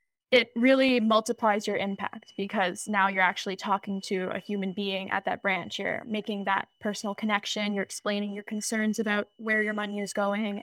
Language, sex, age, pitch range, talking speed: English, female, 10-29, 205-235 Hz, 180 wpm